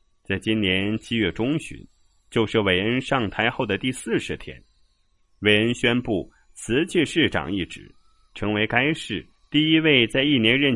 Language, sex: Chinese, male